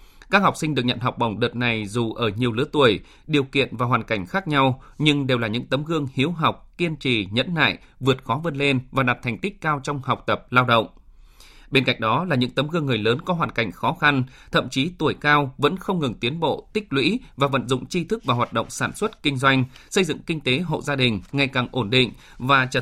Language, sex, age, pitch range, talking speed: Vietnamese, male, 20-39, 125-155 Hz, 255 wpm